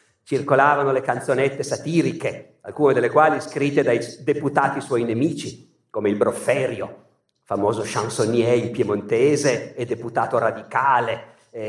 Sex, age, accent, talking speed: male, 50-69, native, 120 wpm